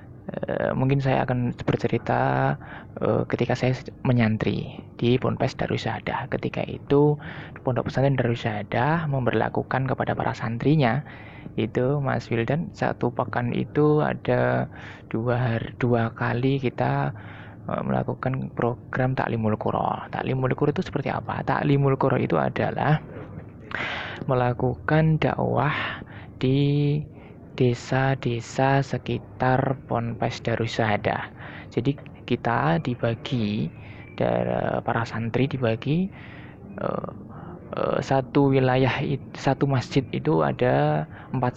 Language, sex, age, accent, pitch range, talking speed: Indonesian, male, 20-39, native, 115-140 Hz, 95 wpm